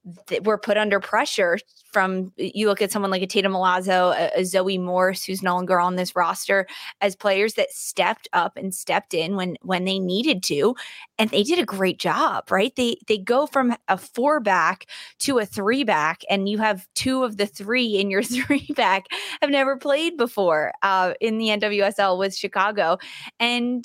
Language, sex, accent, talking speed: English, female, American, 185 wpm